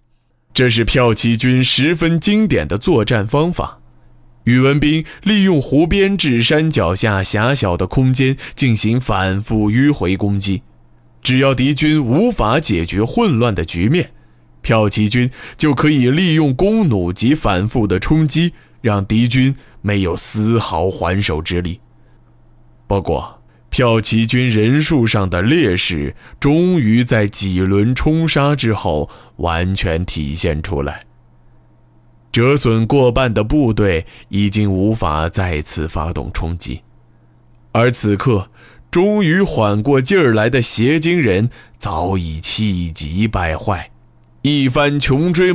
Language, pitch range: Chinese, 95-140 Hz